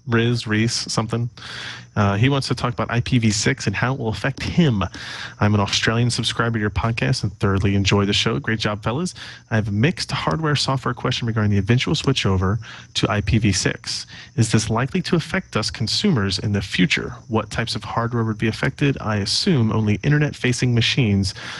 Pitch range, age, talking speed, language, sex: 100-120 Hz, 30-49, 180 wpm, English, male